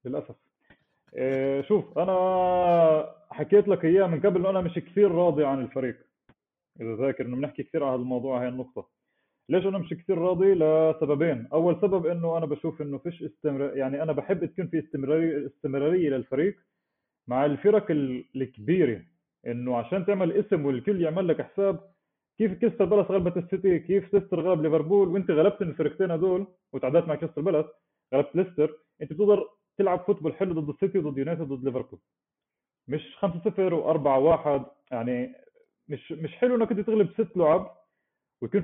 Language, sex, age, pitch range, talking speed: Arabic, male, 30-49, 145-195 Hz, 155 wpm